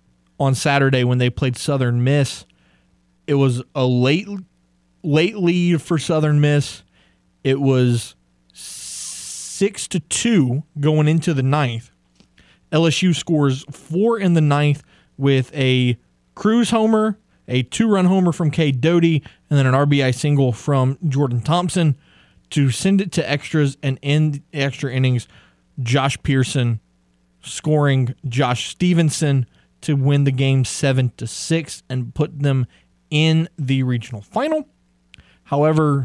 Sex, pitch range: male, 120-150 Hz